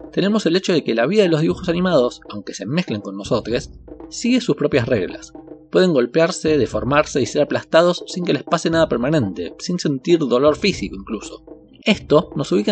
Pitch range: 115-170 Hz